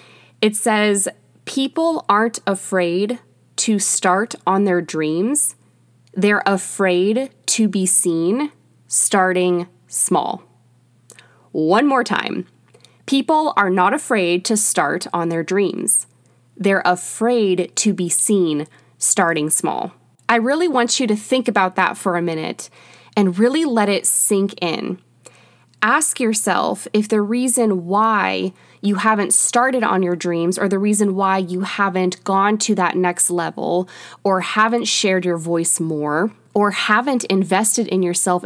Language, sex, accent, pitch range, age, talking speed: English, female, American, 180-220 Hz, 20-39, 135 wpm